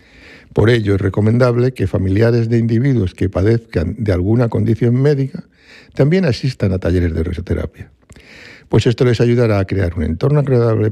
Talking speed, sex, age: 160 wpm, male, 60-79